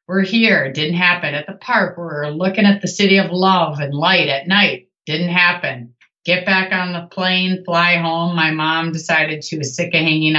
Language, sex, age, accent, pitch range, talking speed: English, female, 30-49, American, 145-175 Hz, 210 wpm